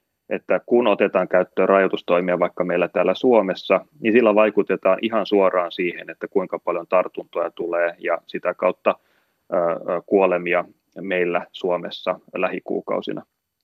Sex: male